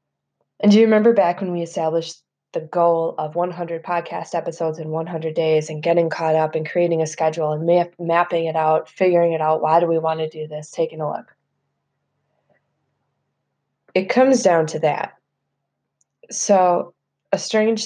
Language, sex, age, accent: English, female, 20-39, American